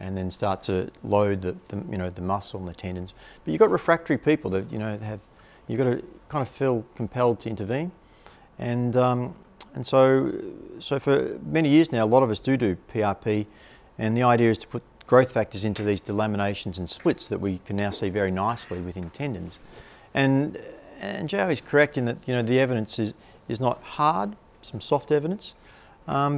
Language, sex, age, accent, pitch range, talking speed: English, male, 40-59, Australian, 100-130 Hz, 200 wpm